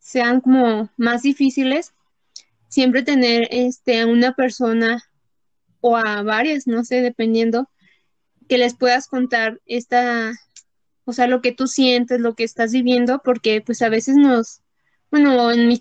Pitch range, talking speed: 230-255 Hz, 150 wpm